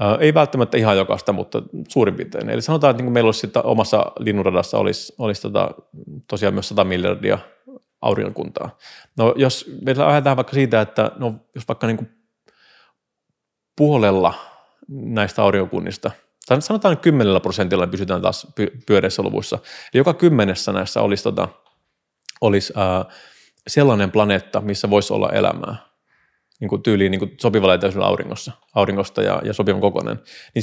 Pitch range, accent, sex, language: 100-130 Hz, native, male, Finnish